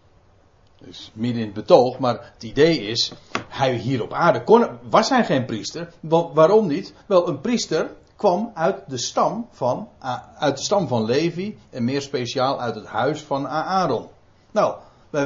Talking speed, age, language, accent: 155 wpm, 60-79, Dutch, Dutch